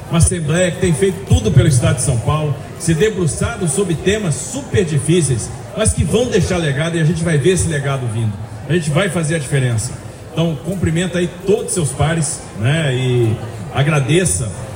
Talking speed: 185 wpm